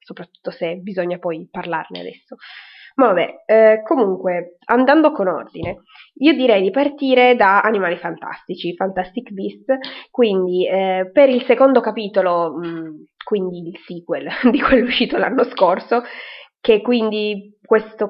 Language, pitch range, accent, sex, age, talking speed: Italian, 180-230 Hz, native, female, 20-39, 135 wpm